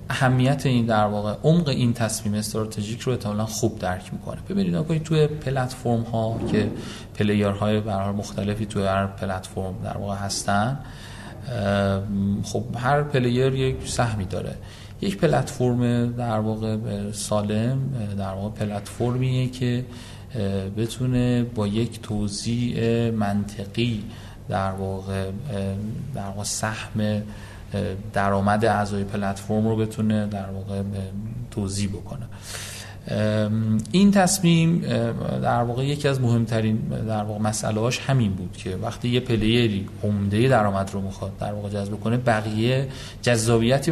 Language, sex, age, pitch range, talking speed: Persian, male, 30-49, 100-120 Hz, 120 wpm